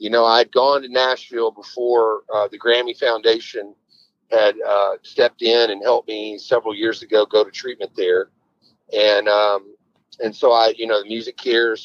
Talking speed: 180 wpm